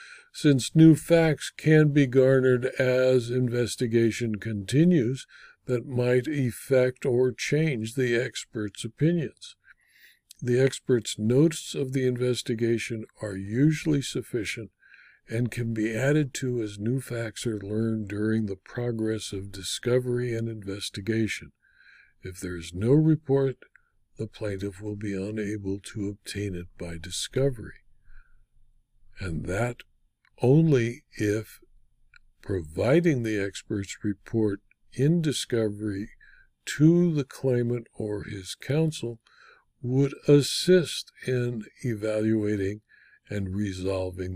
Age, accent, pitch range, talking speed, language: 60-79, American, 105-135 Hz, 110 wpm, English